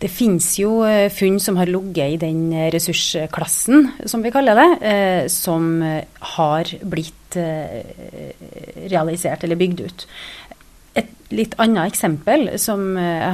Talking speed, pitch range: 120 wpm, 165-200 Hz